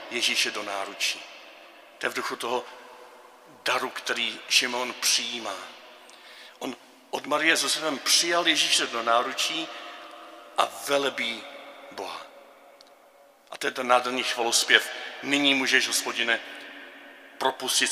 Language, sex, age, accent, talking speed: Czech, male, 50-69, native, 115 wpm